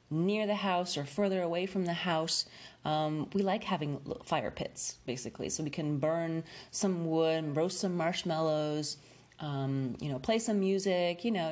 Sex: female